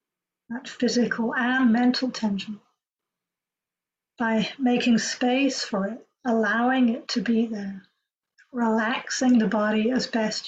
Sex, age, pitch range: female, 40-59, 220-245 Hz